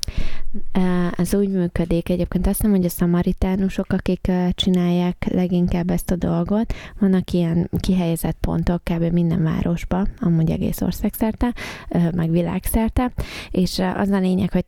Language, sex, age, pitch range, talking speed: Hungarian, female, 20-39, 175-195 Hz, 130 wpm